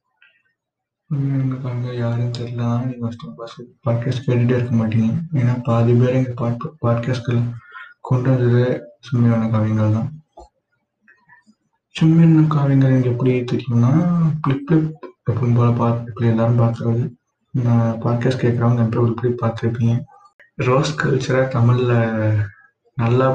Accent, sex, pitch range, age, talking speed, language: native, male, 115-135 Hz, 20-39, 90 wpm, Tamil